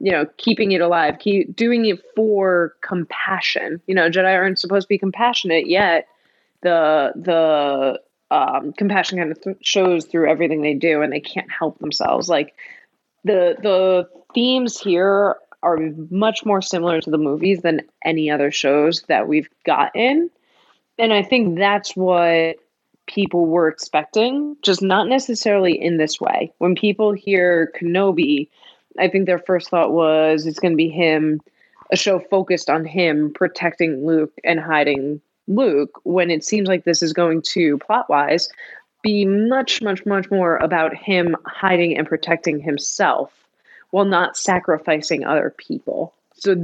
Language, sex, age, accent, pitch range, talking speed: English, female, 20-39, American, 160-200 Hz, 155 wpm